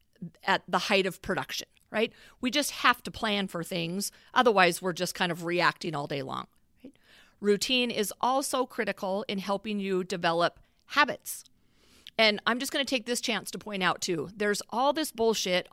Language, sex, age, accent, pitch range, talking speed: English, female, 40-59, American, 185-245 Hz, 185 wpm